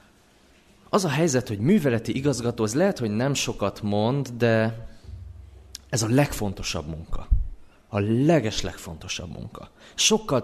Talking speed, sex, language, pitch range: 125 wpm, male, Hungarian, 90-120 Hz